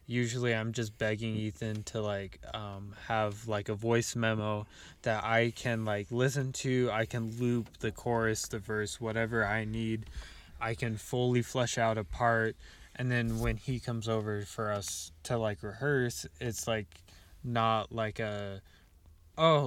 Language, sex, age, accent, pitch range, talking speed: English, male, 20-39, American, 105-115 Hz, 160 wpm